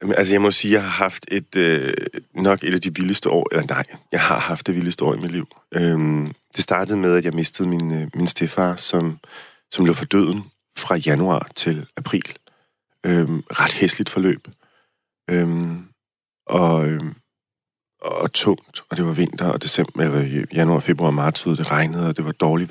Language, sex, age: Danish, male, 40-59